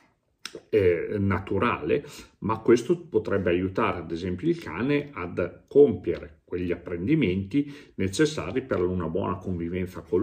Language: Italian